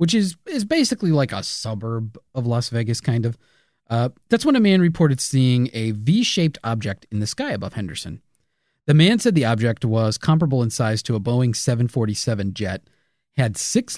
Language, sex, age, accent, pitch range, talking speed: English, male, 30-49, American, 110-165 Hz, 185 wpm